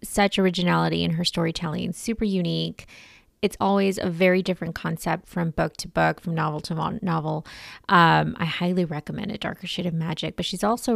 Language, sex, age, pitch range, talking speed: English, female, 20-39, 170-200 Hz, 180 wpm